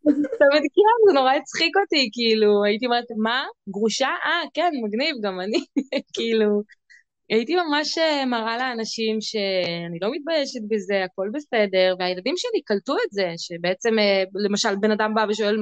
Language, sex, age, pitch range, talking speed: Hebrew, female, 20-39, 190-270 Hz, 140 wpm